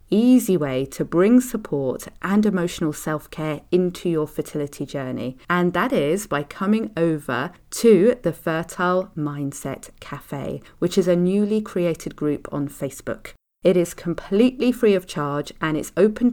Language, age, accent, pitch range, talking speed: English, 40-59, British, 155-205 Hz, 145 wpm